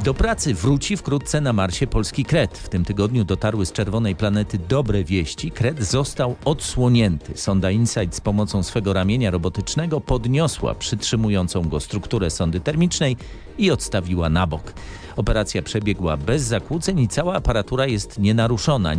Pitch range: 90-125 Hz